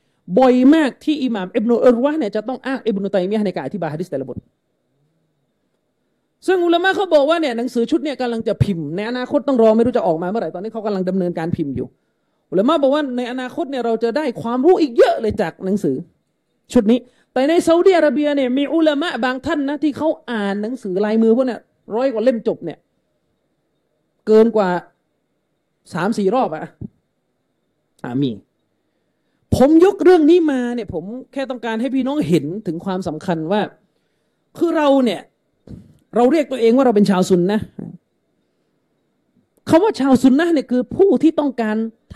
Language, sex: Thai, male